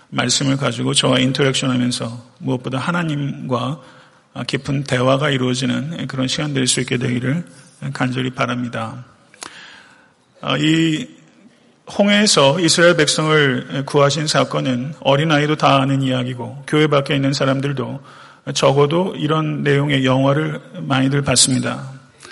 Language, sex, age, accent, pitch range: Korean, male, 40-59, native, 130-155 Hz